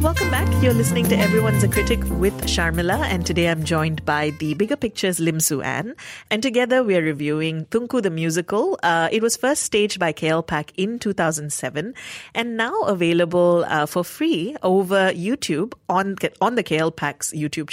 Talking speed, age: 175 wpm, 30-49